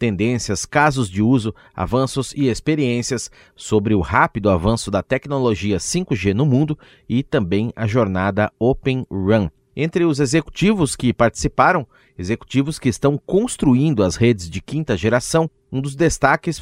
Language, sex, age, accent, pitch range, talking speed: Portuguese, male, 30-49, Brazilian, 105-150 Hz, 140 wpm